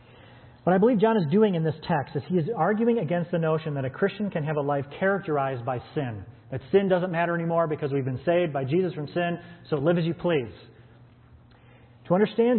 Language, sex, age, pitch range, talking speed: English, male, 40-59, 120-165 Hz, 220 wpm